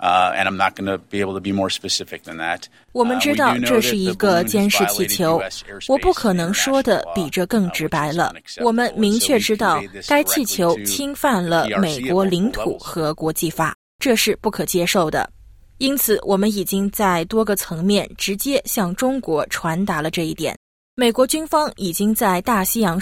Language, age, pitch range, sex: Chinese, 20-39, 175-240 Hz, female